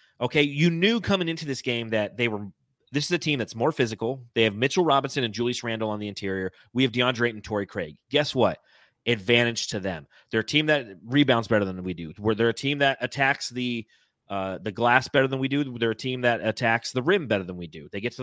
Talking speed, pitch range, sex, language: 245 wpm, 115-150 Hz, male, English